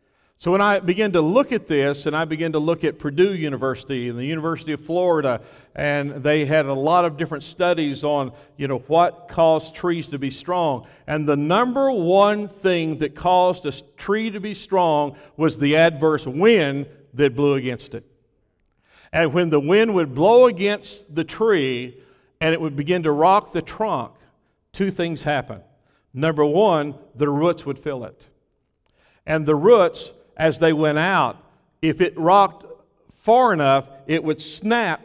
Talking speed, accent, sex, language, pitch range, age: 170 wpm, American, male, English, 140-175 Hz, 50-69